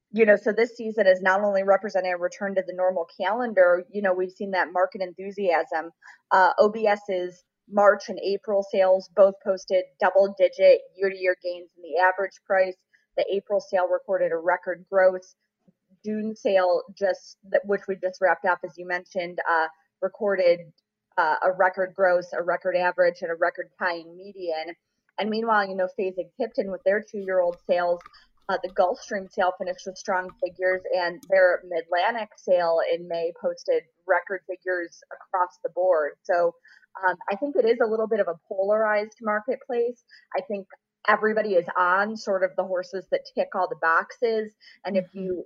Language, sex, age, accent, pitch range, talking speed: English, female, 30-49, American, 180-205 Hz, 170 wpm